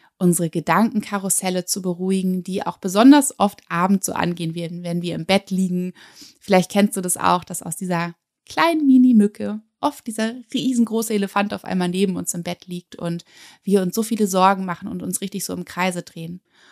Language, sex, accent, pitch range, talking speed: German, female, German, 170-210 Hz, 185 wpm